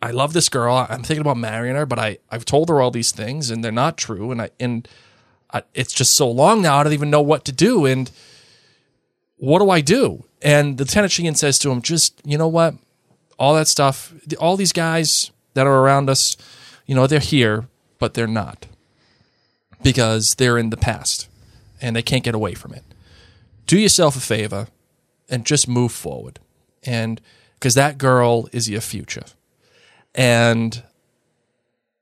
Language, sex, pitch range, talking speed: English, male, 115-140 Hz, 185 wpm